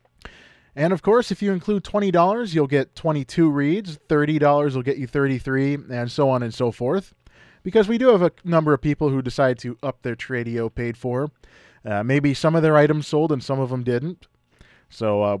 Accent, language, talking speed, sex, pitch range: American, English, 205 wpm, male, 120-160 Hz